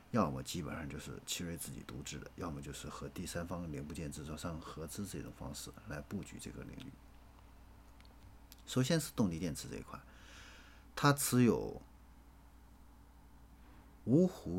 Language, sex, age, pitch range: Chinese, male, 50-69, 70-95 Hz